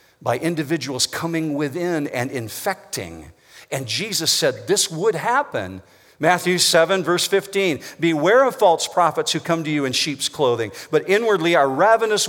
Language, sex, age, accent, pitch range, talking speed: English, male, 50-69, American, 130-180 Hz, 150 wpm